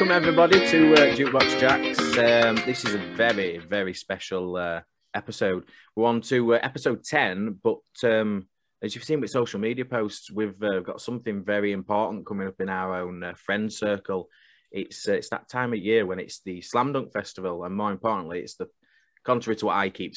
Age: 20-39